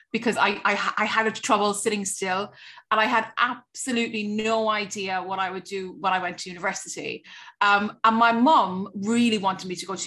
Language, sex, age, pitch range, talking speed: English, female, 30-49, 195-230 Hz, 195 wpm